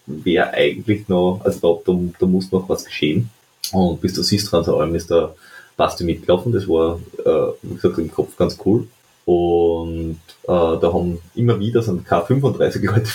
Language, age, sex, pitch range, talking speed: German, 30-49, male, 90-115 Hz, 180 wpm